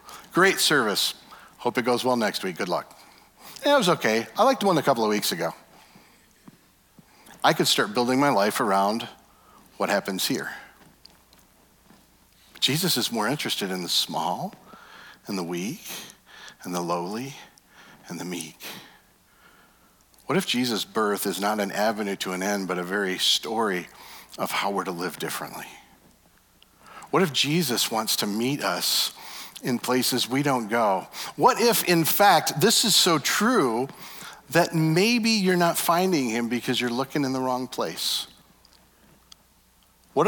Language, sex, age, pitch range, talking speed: English, male, 50-69, 105-150 Hz, 150 wpm